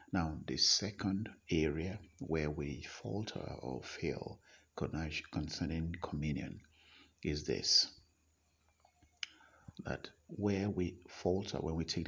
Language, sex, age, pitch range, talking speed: English, male, 50-69, 80-100 Hz, 100 wpm